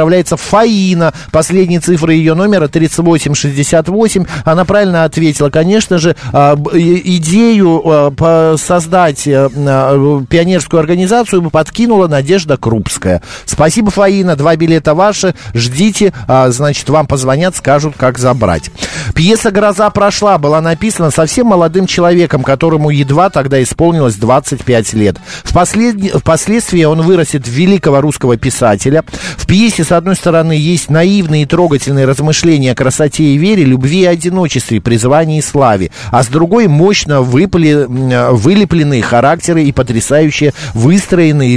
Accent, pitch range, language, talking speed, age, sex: native, 135-175 Hz, Russian, 120 wpm, 50-69, male